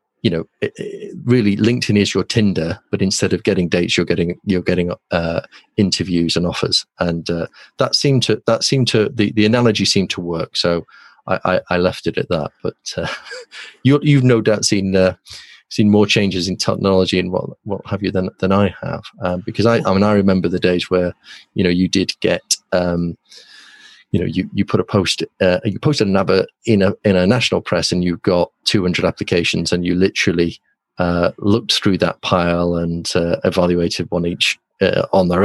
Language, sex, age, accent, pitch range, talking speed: English, male, 30-49, British, 90-105 Hz, 205 wpm